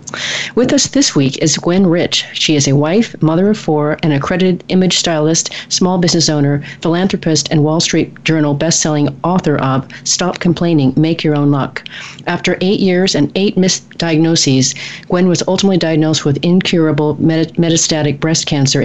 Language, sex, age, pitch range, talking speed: English, female, 40-59, 145-170 Hz, 160 wpm